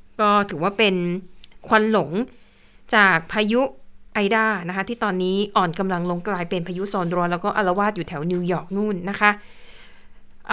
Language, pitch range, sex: Thai, 200-250 Hz, female